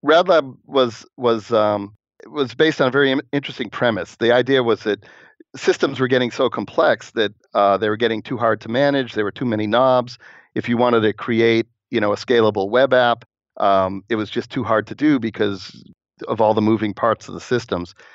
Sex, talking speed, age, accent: male, 205 wpm, 40-59, American